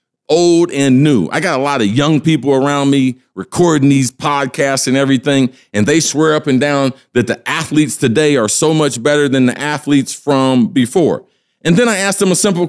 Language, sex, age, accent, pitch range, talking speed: English, male, 50-69, American, 125-180 Hz, 205 wpm